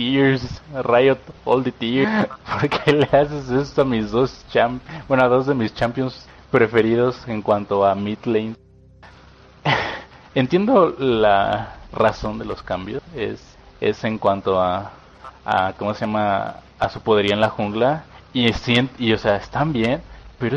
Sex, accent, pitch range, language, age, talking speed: male, Mexican, 100-125 Hz, Spanish, 20-39, 165 wpm